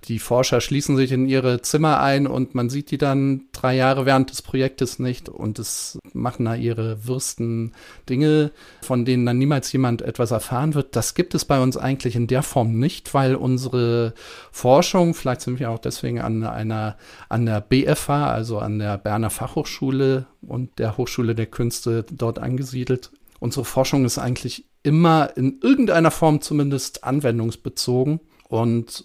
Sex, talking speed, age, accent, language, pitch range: male, 165 wpm, 40-59, German, German, 120-150 Hz